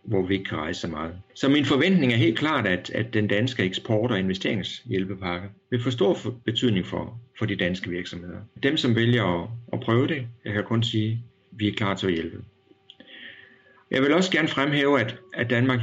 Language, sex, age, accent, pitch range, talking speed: Danish, male, 60-79, native, 95-120 Hz, 215 wpm